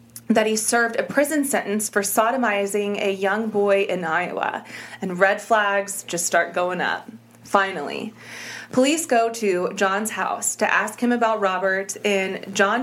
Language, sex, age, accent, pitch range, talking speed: English, female, 30-49, American, 190-235 Hz, 155 wpm